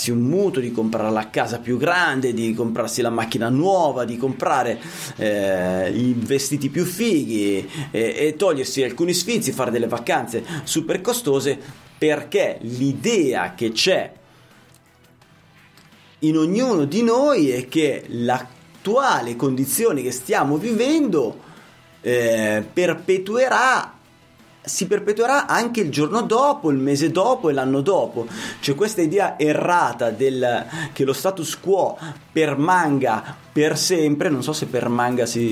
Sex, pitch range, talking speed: male, 120-175 Hz, 130 wpm